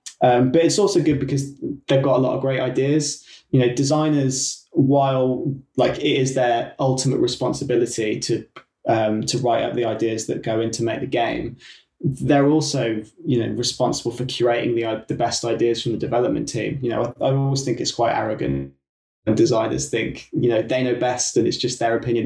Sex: male